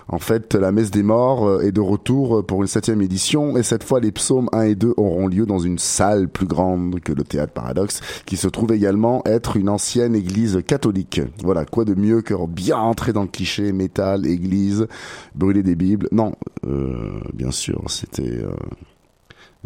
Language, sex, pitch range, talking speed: French, male, 90-115 Hz, 190 wpm